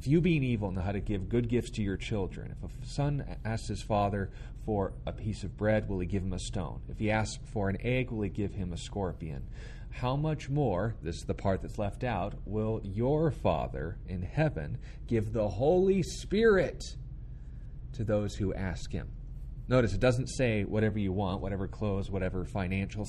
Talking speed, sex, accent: 200 wpm, male, American